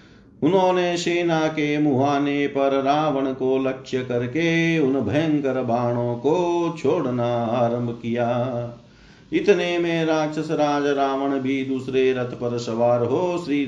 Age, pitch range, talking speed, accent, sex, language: 50-69, 120-155 Hz, 115 wpm, native, male, Hindi